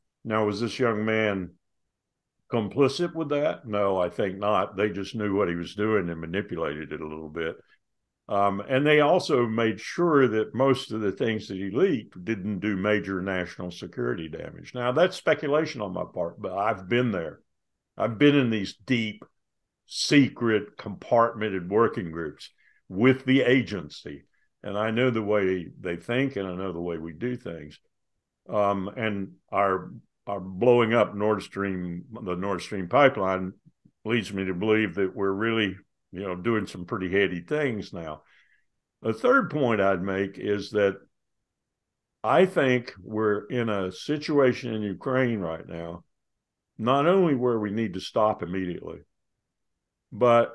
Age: 60-79